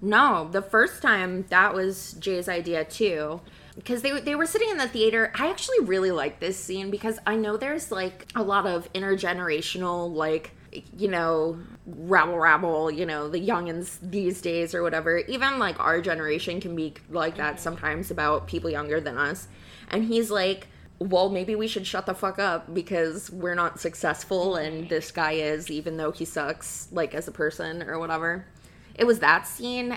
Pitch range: 160-205 Hz